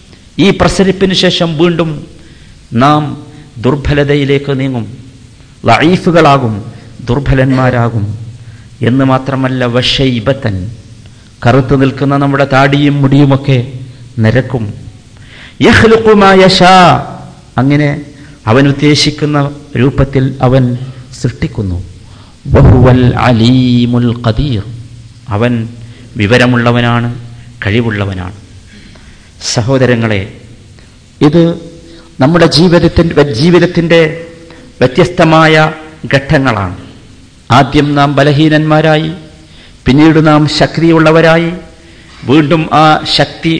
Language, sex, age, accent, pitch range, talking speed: Malayalam, male, 50-69, native, 120-155 Hz, 60 wpm